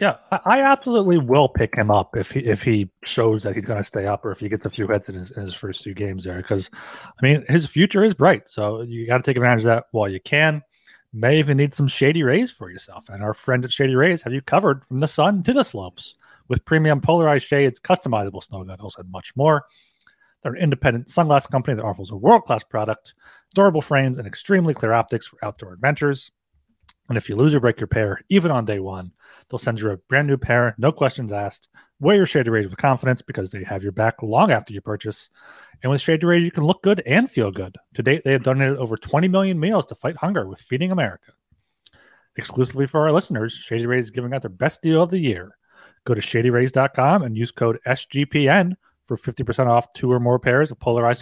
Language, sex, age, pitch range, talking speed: English, male, 30-49, 110-150 Hz, 230 wpm